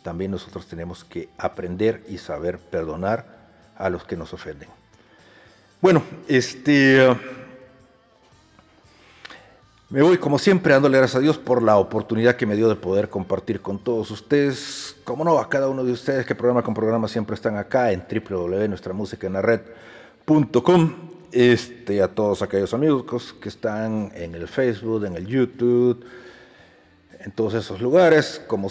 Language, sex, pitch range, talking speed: Spanish, male, 95-130 Hz, 140 wpm